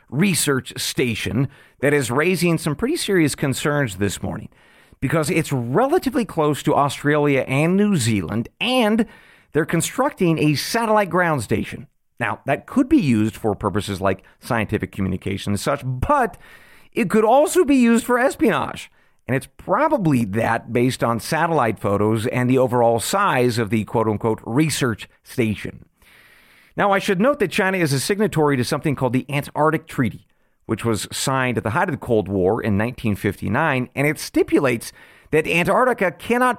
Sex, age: male, 40-59